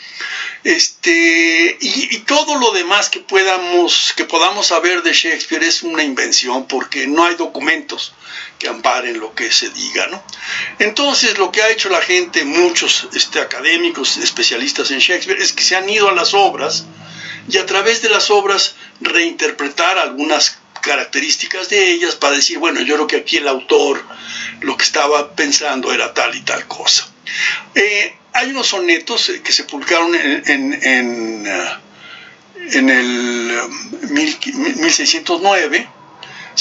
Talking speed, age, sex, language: 155 wpm, 60-79, male, Spanish